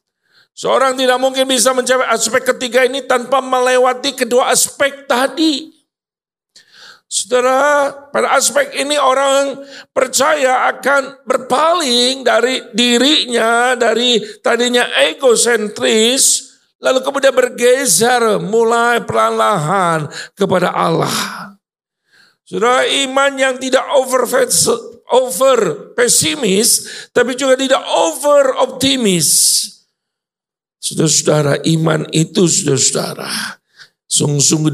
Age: 50-69